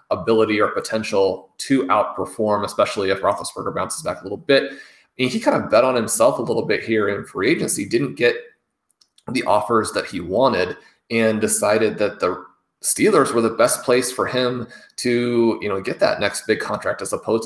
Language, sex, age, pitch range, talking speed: English, male, 30-49, 100-125 Hz, 190 wpm